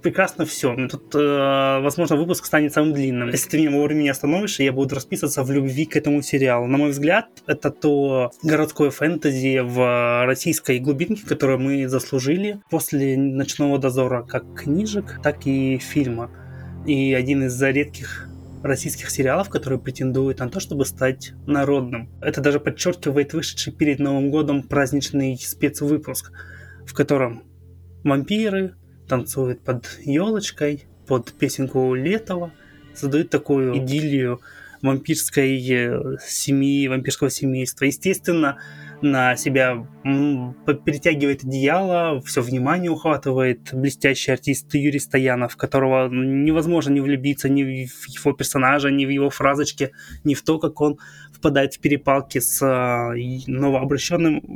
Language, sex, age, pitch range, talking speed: Russian, male, 20-39, 130-150 Hz, 125 wpm